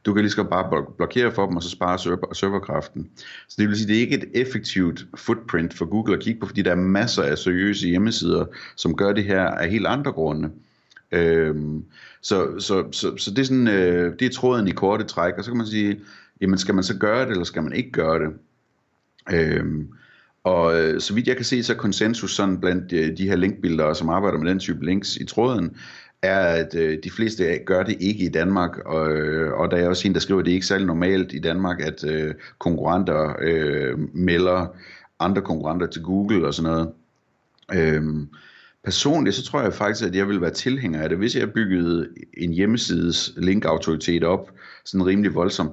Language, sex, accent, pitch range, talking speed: Danish, male, native, 80-100 Hz, 205 wpm